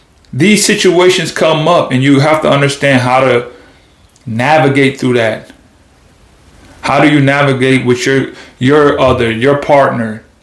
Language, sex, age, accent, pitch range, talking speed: English, male, 30-49, American, 130-155 Hz, 140 wpm